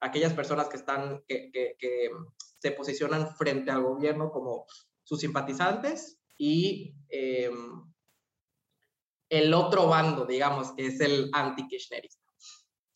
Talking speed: 120 wpm